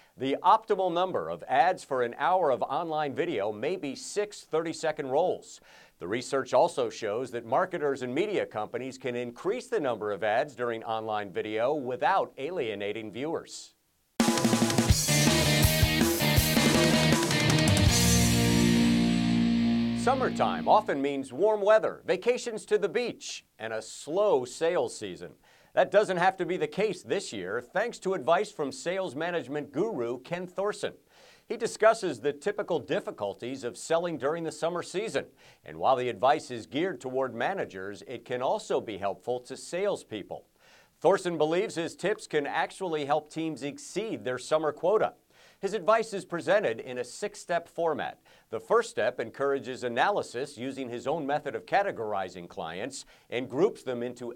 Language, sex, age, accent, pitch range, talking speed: English, male, 50-69, American, 115-175 Hz, 145 wpm